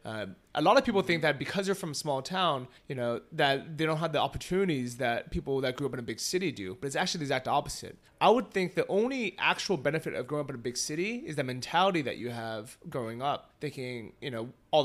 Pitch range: 130-170 Hz